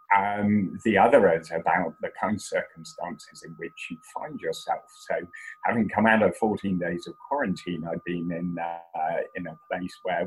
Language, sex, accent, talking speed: English, male, British, 180 wpm